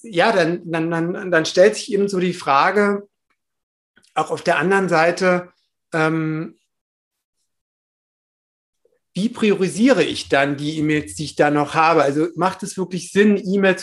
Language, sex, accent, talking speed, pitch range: German, male, German, 145 wpm, 150-180 Hz